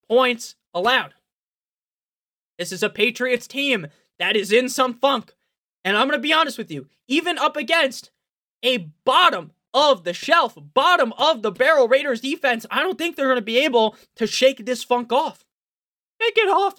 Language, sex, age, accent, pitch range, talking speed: English, male, 20-39, American, 225-330 Hz, 180 wpm